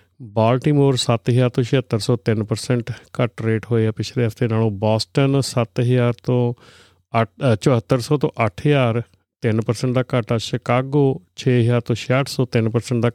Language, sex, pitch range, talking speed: Punjabi, male, 110-125 Hz, 125 wpm